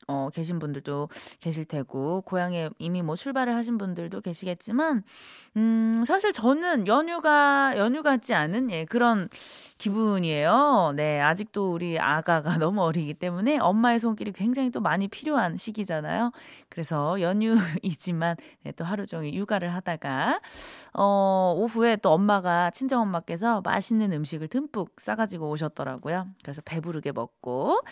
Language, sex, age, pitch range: Korean, female, 20-39, 165-240 Hz